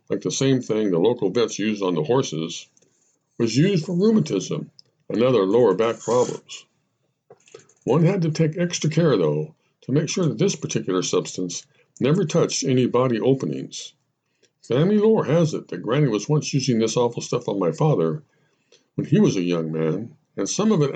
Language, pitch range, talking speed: English, 115-165 Hz, 185 wpm